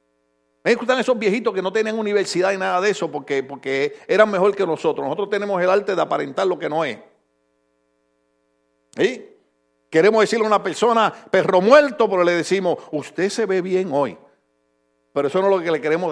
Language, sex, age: Spanish, male, 50-69